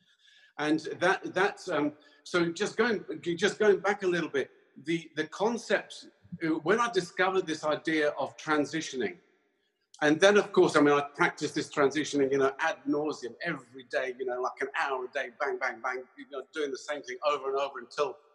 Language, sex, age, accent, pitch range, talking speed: English, male, 50-69, British, 135-175 Hz, 195 wpm